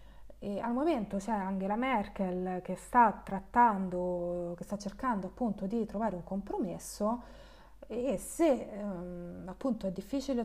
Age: 20-39